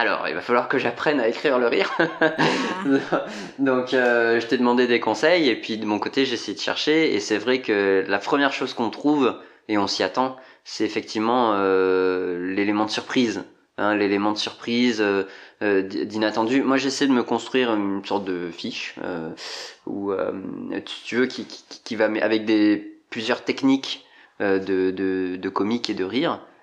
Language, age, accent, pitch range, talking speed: French, 20-39, French, 100-125 Hz, 185 wpm